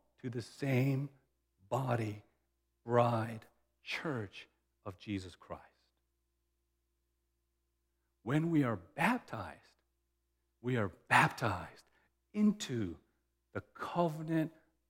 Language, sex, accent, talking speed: English, male, American, 75 wpm